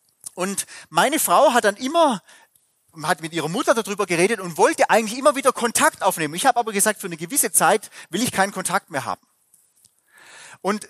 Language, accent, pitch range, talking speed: German, German, 160-245 Hz, 185 wpm